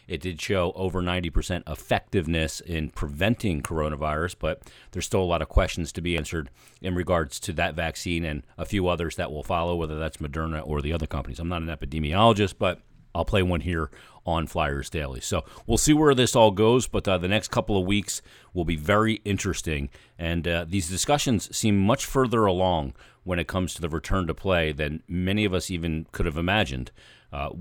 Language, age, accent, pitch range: English, 40-59, American, 80-95 Hz